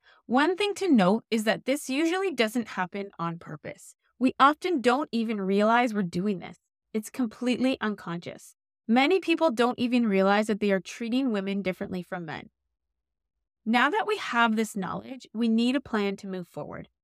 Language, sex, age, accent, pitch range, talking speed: English, female, 20-39, American, 190-255 Hz, 175 wpm